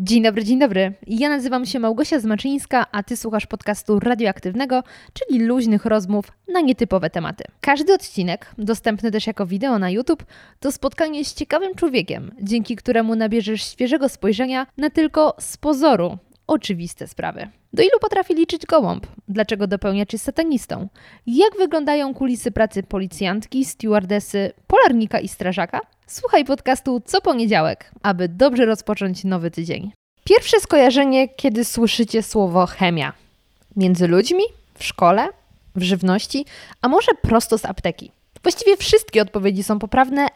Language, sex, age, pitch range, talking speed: Polish, female, 20-39, 205-275 Hz, 140 wpm